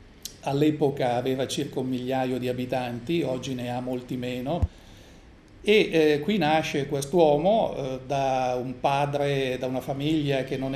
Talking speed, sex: 140 wpm, male